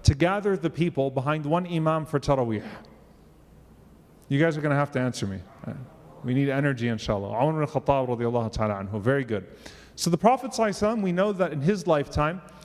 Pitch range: 140-185 Hz